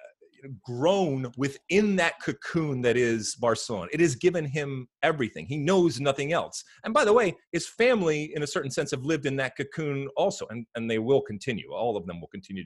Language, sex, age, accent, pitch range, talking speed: English, male, 30-49, American, 110-160 Hz, 200 wpm